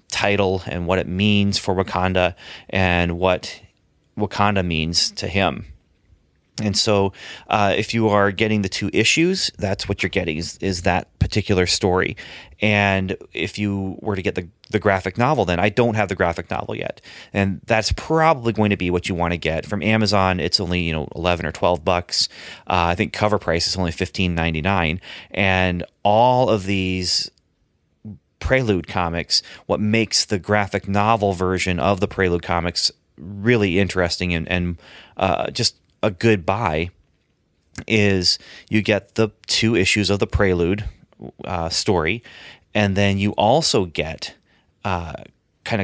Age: 30-49